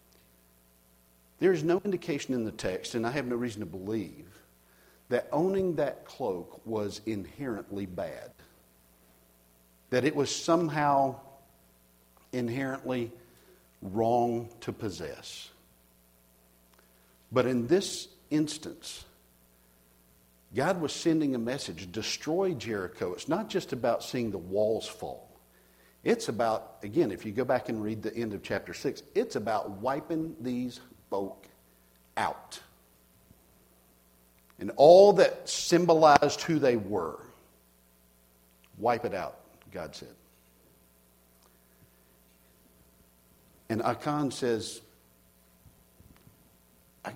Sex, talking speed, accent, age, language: male, 110 wpm, American, 50-69, English